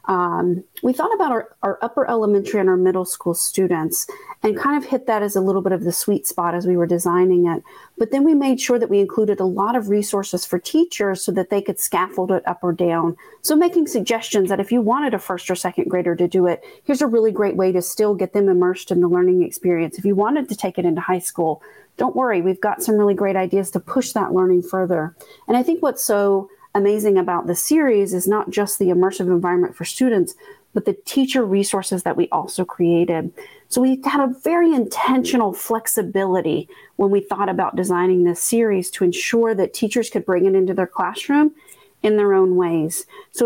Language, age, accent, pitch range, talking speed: English, 40-59, American, 185-235 Hz, 220 wpm